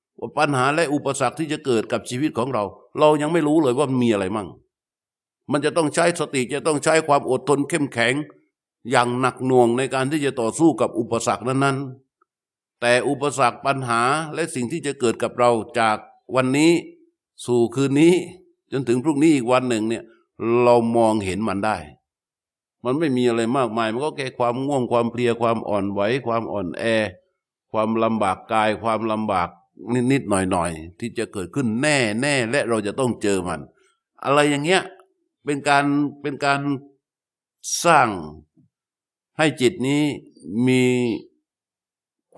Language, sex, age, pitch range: Thai, male, 60-79, 115-145 Hz